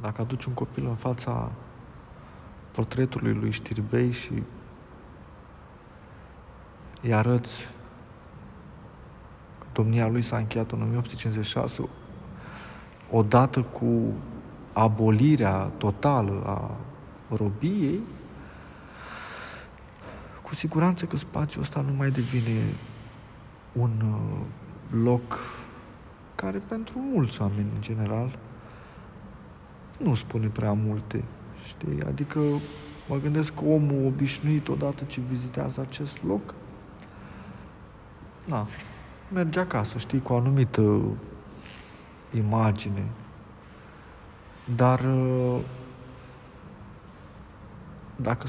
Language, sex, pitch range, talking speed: Romanian, male, 105-130 Hz, 85 wpm